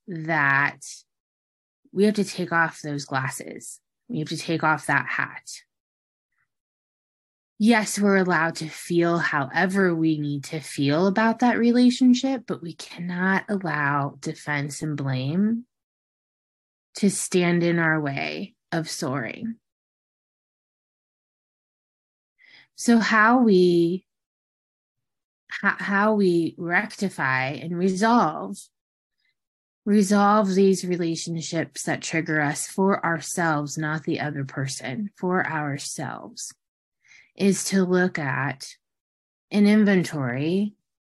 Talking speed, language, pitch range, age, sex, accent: 100 wpm, English, 145-195 Hz, 20-39, female, American